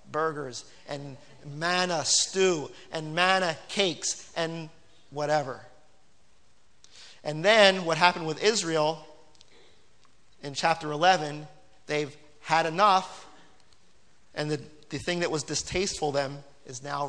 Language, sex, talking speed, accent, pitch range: English, male, 110 wpm, American, 155-210 Hz